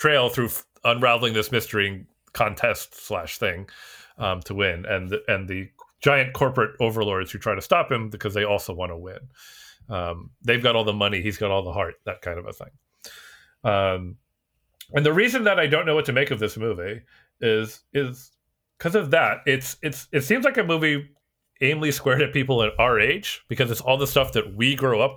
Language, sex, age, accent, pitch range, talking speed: English, male, 30-49, American, 105-140 Hz, 210 wpm